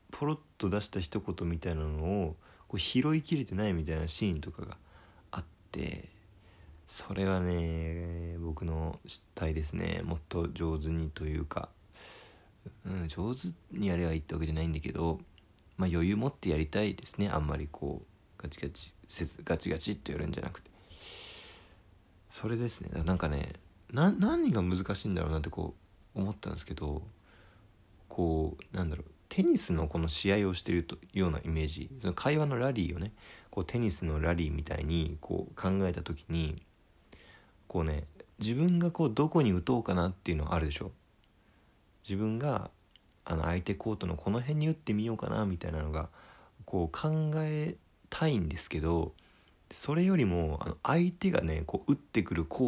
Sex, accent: male, native